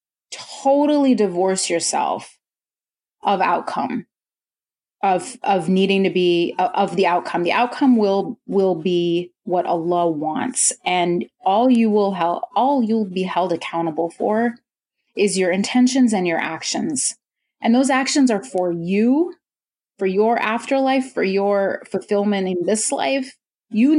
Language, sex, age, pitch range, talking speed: English, female, 30-49, 175-235 Hz, 135 wpm